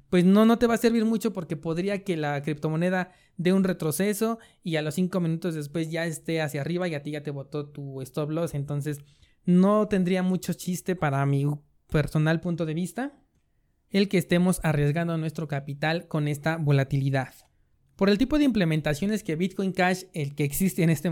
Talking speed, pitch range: 195 wpm, 150-185 Hz